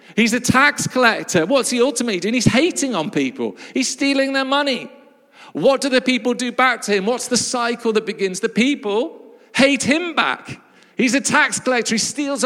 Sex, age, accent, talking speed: male, 50-69, British, 195 wpm